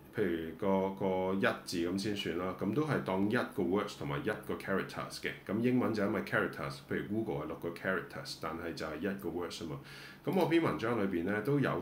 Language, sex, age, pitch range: Chinese, male, 20-39, 85-110 Hz